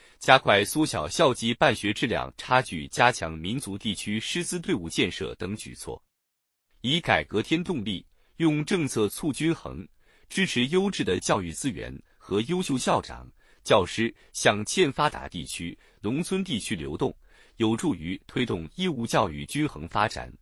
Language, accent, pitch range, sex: Chinese, native, 100-155 Hz, male